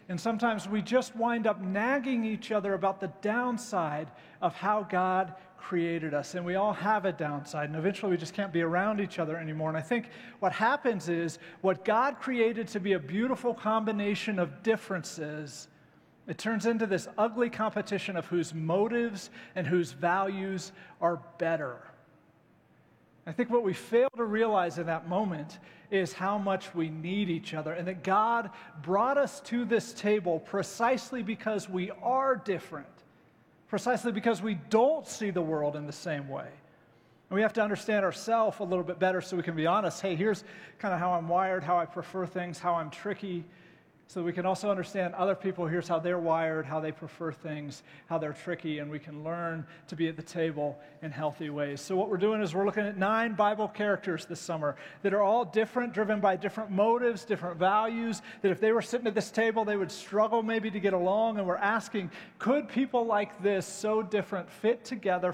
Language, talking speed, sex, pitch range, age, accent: English, 195 wpm, male, 170-215 Hz, 40-59, American